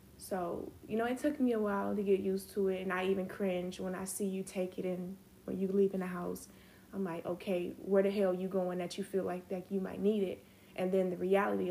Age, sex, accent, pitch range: 10-29, female, American, 185-200 Hz